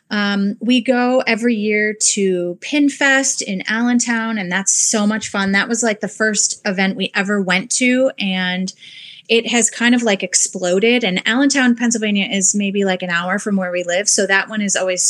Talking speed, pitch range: 190 wpm, 190-230 Hz